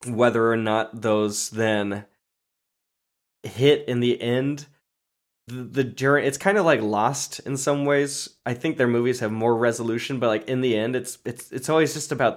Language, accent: English, American